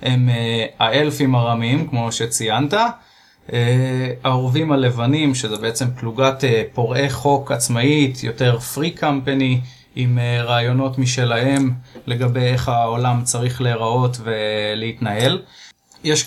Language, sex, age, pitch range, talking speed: Hebrew, male, 20-39, 115-135 Hz, 110 wpm